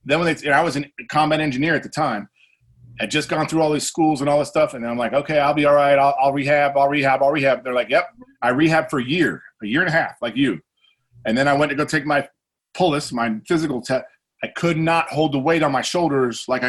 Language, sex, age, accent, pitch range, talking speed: English, male, 40-59, American, 125-160 Hz, 275 wpm